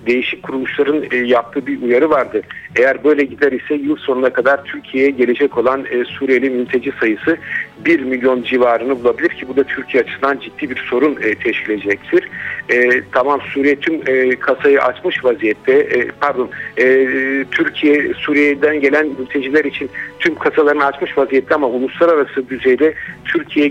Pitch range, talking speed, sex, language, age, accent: 130-165 Hz, 135 wpm, male, Turkish, 50-69, native